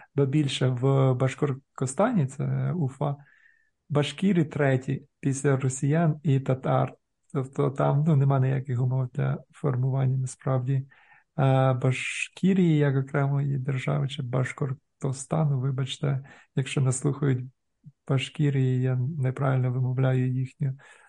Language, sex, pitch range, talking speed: Ukrainian, male, 130-145 Hz, 100 wpm